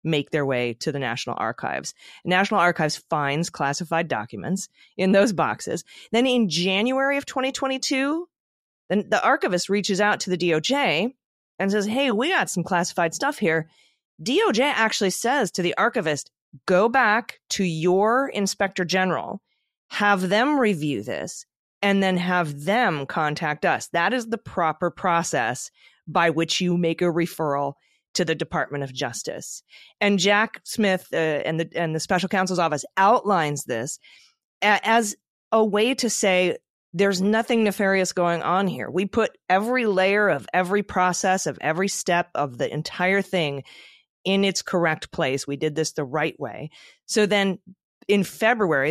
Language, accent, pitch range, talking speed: English, American, 160-210 Hz, 155 wpm